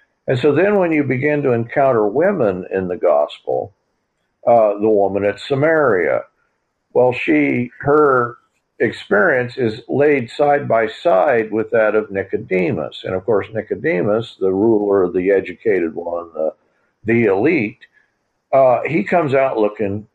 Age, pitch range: 50-69, 110-140 Hz